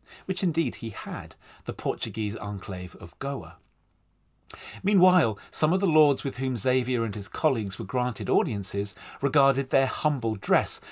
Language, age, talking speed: English, 40-59, 150 wpm